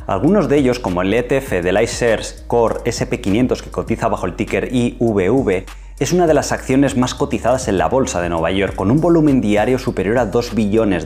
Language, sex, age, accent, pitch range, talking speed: Spanish, male, 20-39, Spanish, 100-135 Hz, 200 wpm